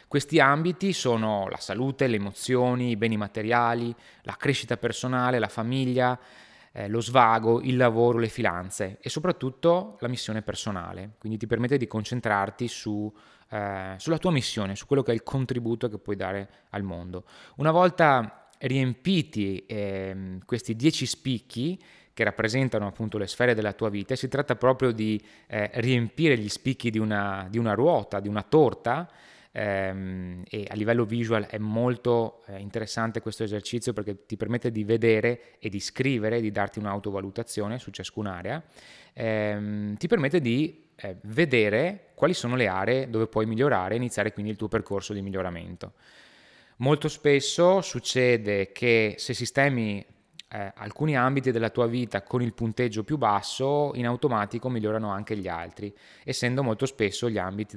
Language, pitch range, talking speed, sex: Italian, 105-130 Hz, 155 wpm, male